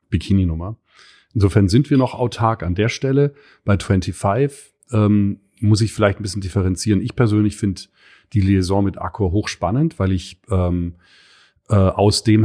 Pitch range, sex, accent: 90-105 Hz, male, German